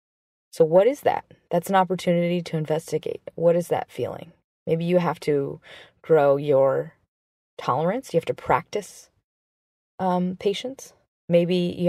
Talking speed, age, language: 140 wpm, 20-39, English